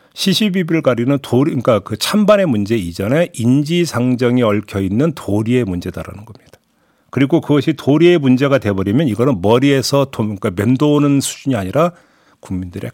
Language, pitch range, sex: Korean, 110-155 Hz, male